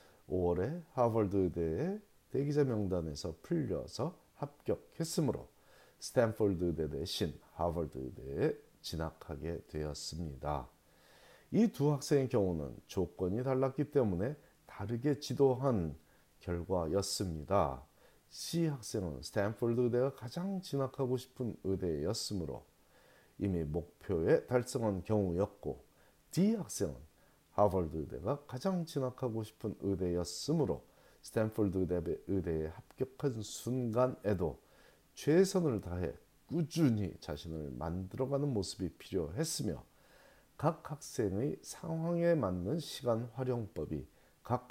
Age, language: 40-59, Korean